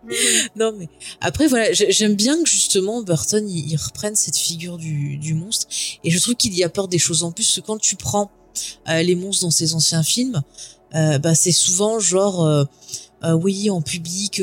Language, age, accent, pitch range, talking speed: French, 20-39, French, 165-210 Hz, 200 wpm